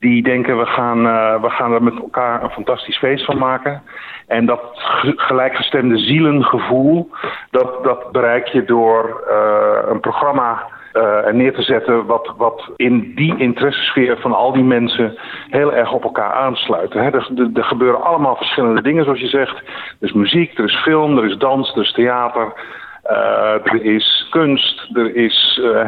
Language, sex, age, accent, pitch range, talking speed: Dutch, male, 50-69, Dutch, 115-135 Hz, 175 wpm